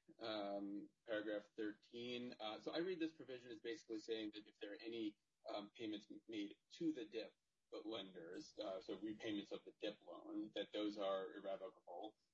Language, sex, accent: English, male, American